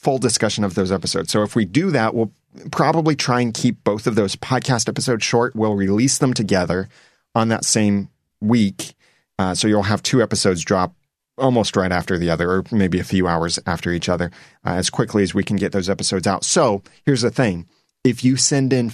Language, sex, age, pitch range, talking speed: English, male, 30-49, 95-120 Hz, 210 wpm